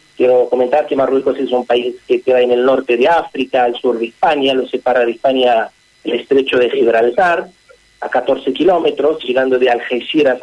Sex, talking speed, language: male, 185 wpm, Spanish